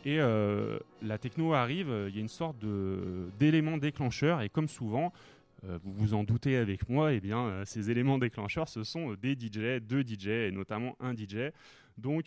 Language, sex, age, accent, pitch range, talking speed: French, male, 20-39, French, 105-130 Hz, 190 wpm